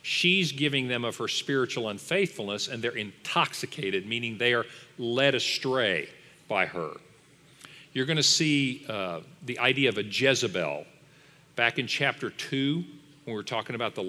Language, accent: English, American